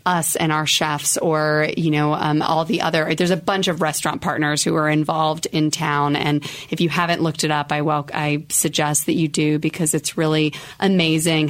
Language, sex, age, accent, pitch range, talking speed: English, female, 30-49, American, 155-175 Hz, 205 wpm